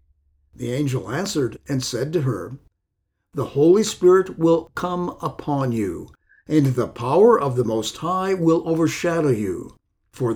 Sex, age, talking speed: male, 50-69, 145 wpm